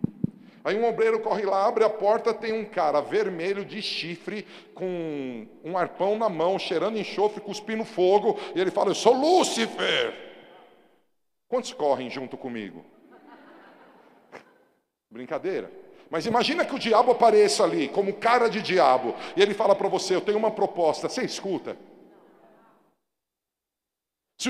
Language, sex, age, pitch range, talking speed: Portuguese, male, 50-69, 170-250 Hz, 140 wpm